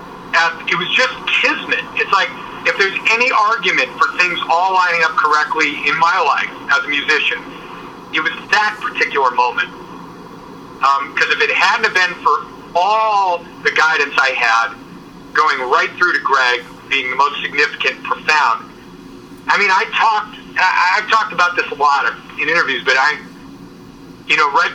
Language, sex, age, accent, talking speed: English, male, 50-69, American, 160 wpm